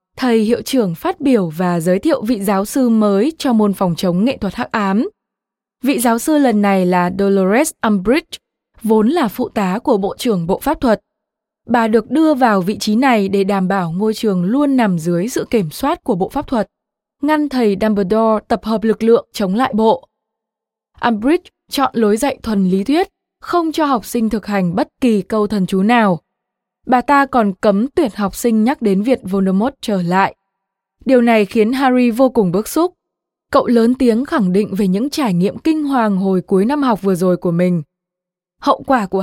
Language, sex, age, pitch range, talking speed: Vietnamese, female, 20-39, 195-260 Hz, 200 wpm